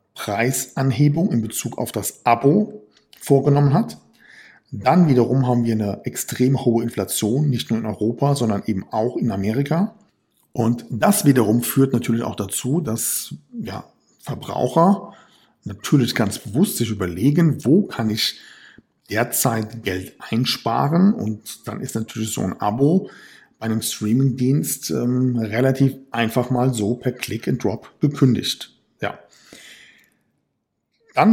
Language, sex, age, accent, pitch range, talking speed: German, male, 50-69, German, 110-140 Hz, 125 wpm